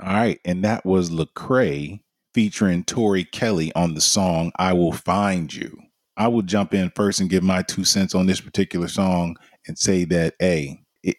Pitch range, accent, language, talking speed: 85-100 Hz, American, English, 190 wpm